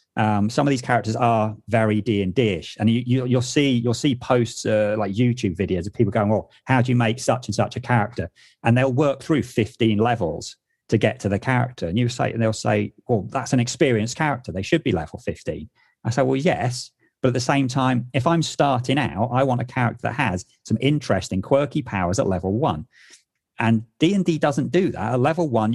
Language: English